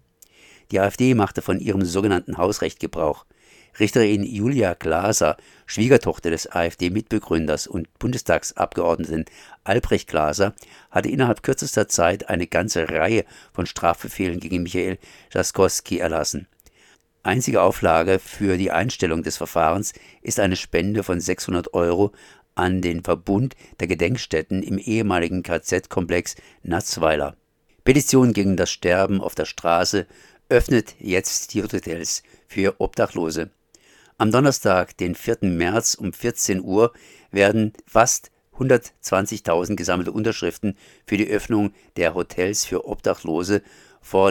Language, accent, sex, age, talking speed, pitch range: German, German, male, 50-69, 120 wpm, 90-105 Hz